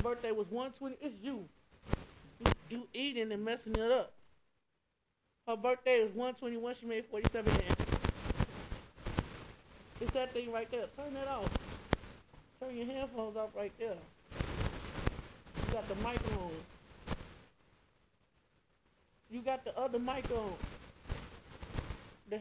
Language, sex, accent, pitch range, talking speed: English, male, American, 200-260 Hz, 120 wpm